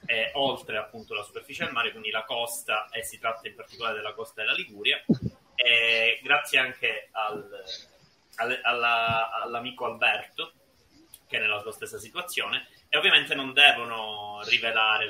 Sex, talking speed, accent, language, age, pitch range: male, 150 wpm, native, Italian, 30-49, 105-130 Hz